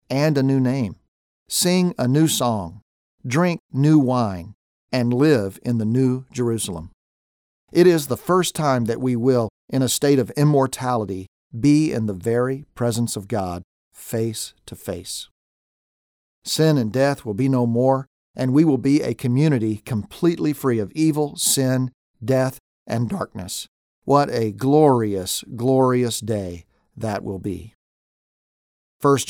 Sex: male